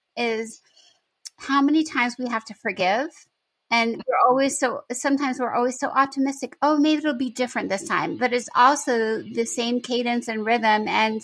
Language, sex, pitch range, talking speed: English, female, 230-275 Hz, 175 wpm